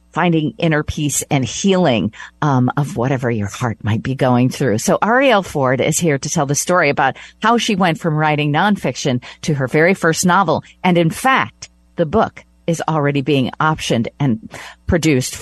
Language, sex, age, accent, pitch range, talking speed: English, female, 50-69, American, 130-175 Hz, 180 wpm